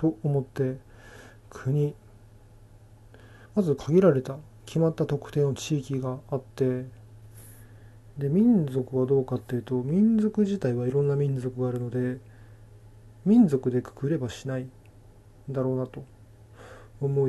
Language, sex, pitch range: Japanese, male, 105-135 Hz